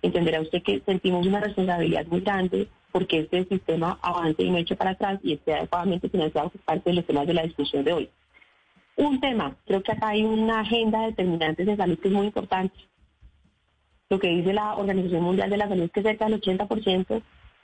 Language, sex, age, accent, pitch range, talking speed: Spanish, female, 30-49, Colombian, 175-220 Hz, 205 wpm